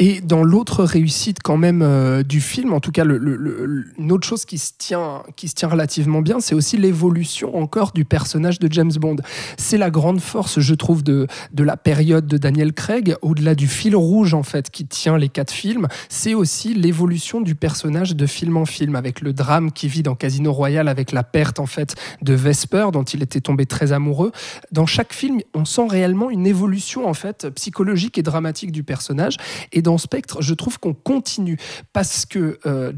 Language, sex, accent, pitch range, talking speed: French, male, French, 145-185 Hz, 205 wpm